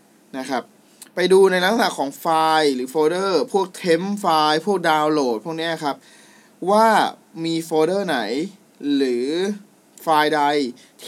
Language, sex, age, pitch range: Thai, male, 20-39, 130-175 Hz